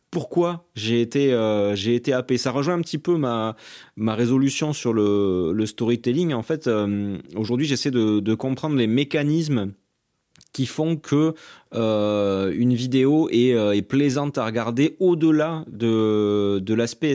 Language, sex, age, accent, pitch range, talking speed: French, male, 30-49, French, 100-135 Hz, 155 wpm